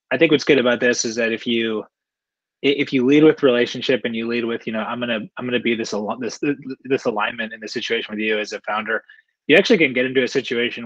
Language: English